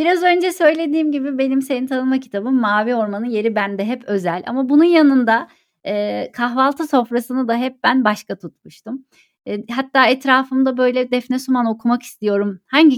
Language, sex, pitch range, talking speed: Turkish, female, 205-265 Hz, 155 wpm